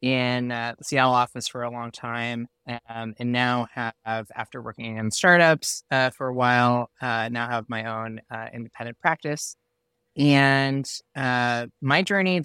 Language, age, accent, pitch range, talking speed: English, 20-39, American, 120-145 Hz, 165 wpm